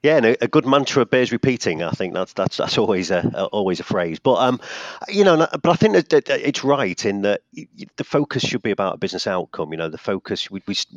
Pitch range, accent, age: 85-125 Hz, British, 40-59